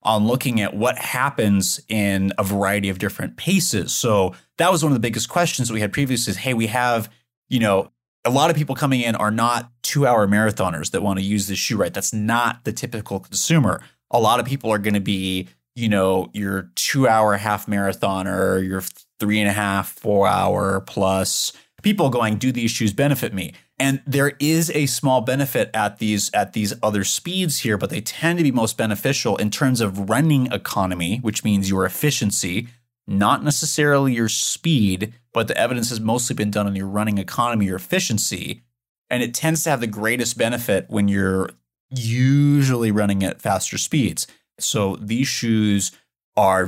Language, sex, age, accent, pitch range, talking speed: English, male, 30-49, American, 100-130 Hz, 180 wpm